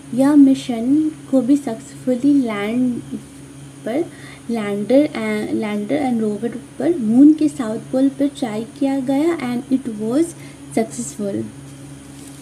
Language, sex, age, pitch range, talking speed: Hindi, female, 20-39, 220-275 Hz, 120 wpm